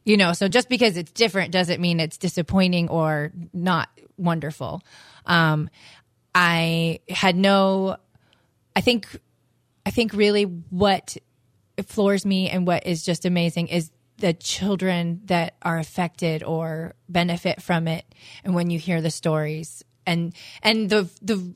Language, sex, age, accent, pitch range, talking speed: English, female, 20-39, American, 160-190 Hz, 140 wpm